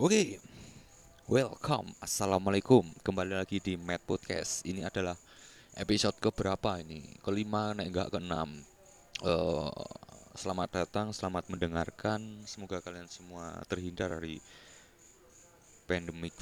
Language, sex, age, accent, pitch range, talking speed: Indonesian, male, 20-39, native, 85-95 Hz, 110 wpm